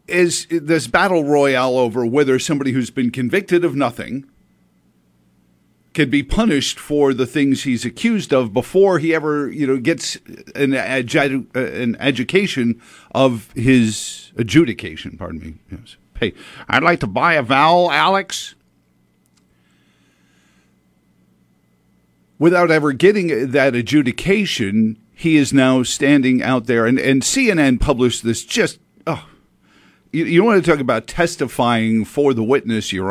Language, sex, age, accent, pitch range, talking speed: English, male, 50-69, American, 110-150 Hz, 130 wpm